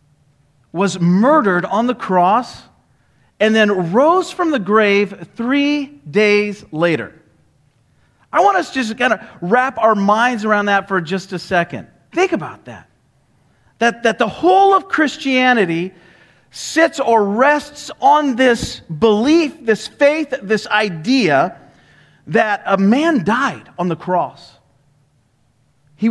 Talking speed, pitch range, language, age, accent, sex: 130 wpm, 160-245 Hz, English, 40-59, American, male